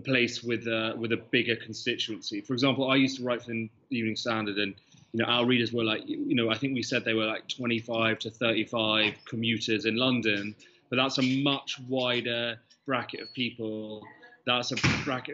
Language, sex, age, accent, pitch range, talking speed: English, male, 30-49, British, 115-130 Hz, 195 wpm